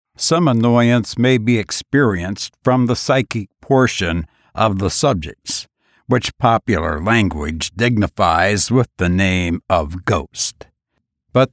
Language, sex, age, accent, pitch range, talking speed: English, male, 60-79, American, 105-130 Hz, 115 wpm